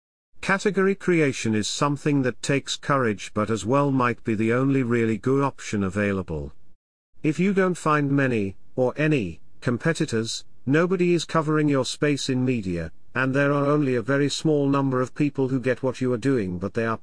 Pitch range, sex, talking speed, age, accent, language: 105-145 Hz, male, 185 wpm, 50-69, British, English